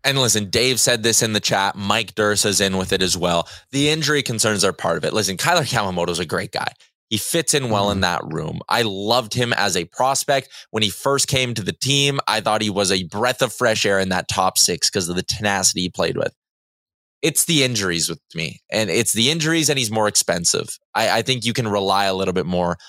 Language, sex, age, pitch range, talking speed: English, male, 20-39, 100-135 Hz, 245 wpm